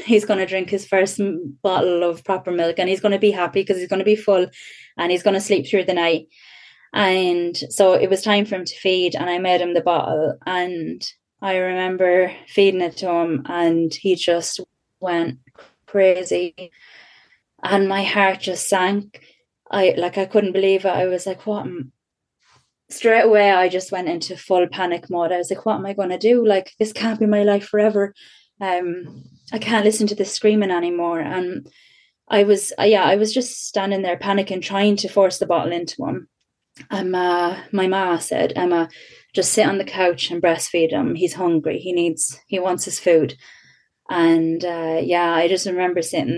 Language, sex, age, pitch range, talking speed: English, female, 20-39, 175-200 Hz, 195 wpm